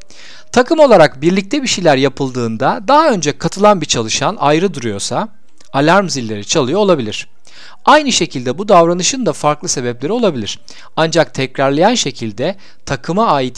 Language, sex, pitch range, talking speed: Turkish, male, 125-200 Hz, 135 wpm